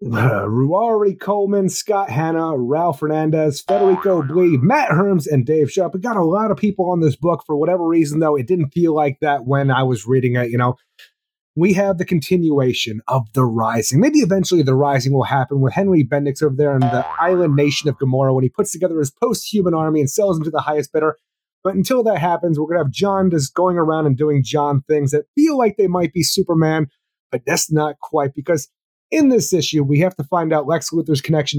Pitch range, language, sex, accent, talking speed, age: 140-180 Hz, English, male, American, 220 wpm, 30-49